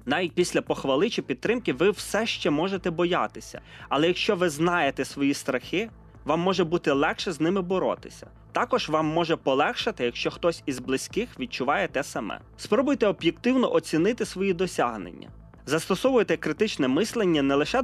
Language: Ukrainian